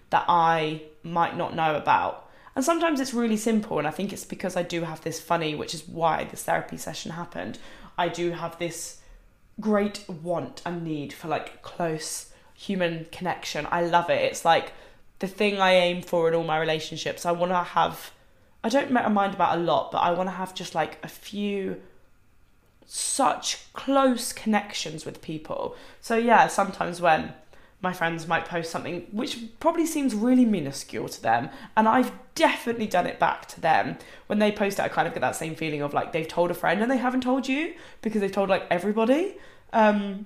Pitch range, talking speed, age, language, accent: 165-230 Hz, 195 wpm, 20-39, English, British